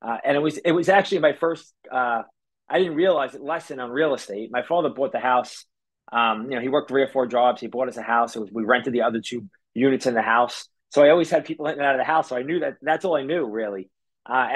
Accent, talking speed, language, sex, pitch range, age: American, 280 wpm, English, male, 125-160 Hz, 30-49